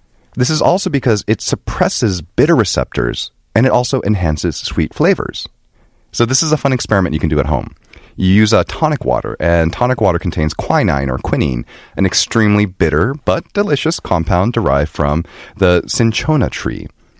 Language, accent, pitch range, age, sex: Korean, American, 85-140 Hz, 30-49, male